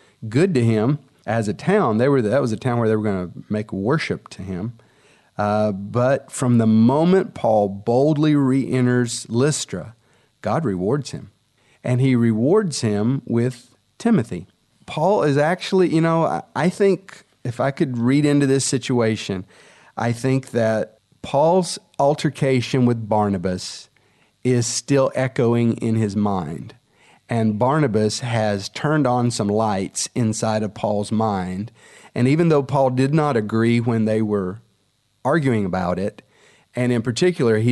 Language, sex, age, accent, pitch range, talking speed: English, male, 40-59, American, 110-140 Hz, 150 wpm